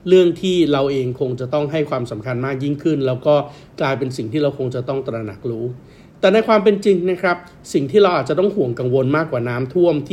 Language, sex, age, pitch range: Thai, male, 60-79, 125-165 Hz